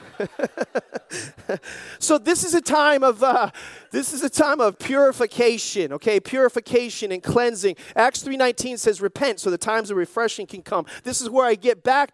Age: 30-49